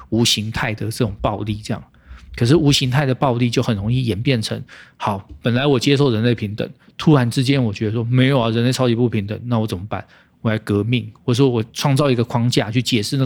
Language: Chinese